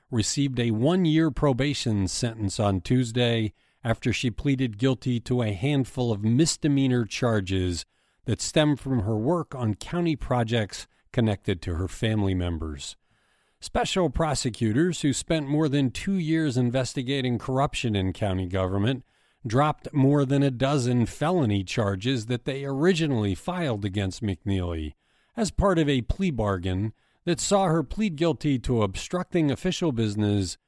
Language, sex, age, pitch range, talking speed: English, male, 50-69, 105-145 Hz, 140 wpm